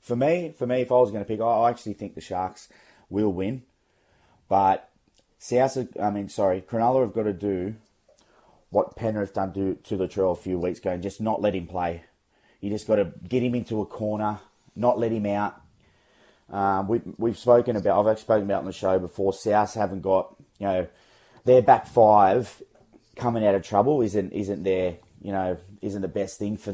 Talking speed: 210 wpm